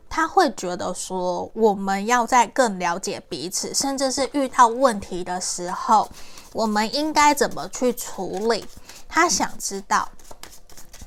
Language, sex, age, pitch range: Chinese, female, 20-39, 200-255 Hz